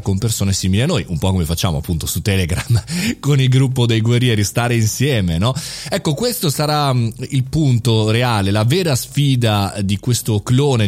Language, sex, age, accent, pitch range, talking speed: Italian, male, 30-49, native, 100-130 Hz, 175 wpm